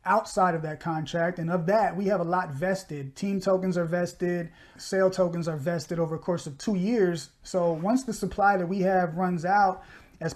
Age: 30-49